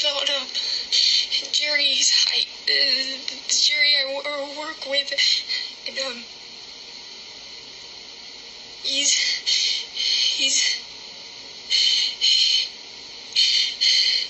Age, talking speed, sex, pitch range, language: 10-29, 60 wpm, female, 285-470 Hz, Polish